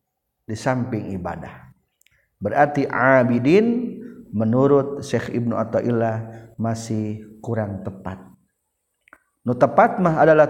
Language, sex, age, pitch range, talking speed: Indonesian, male, 50-69, 115-135 Hz, 90 wpm